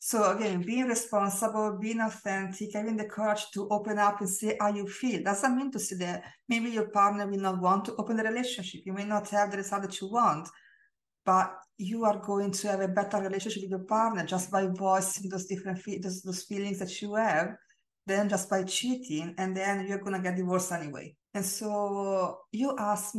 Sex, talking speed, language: female, 210 wpm, English